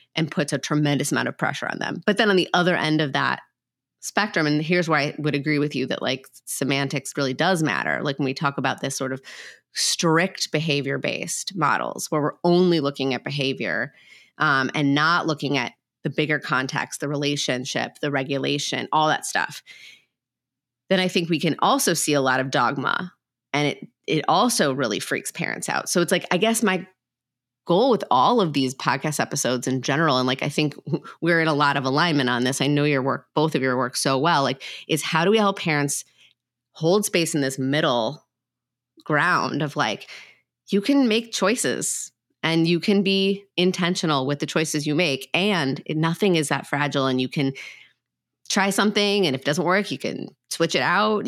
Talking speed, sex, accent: 200 wpm, female, American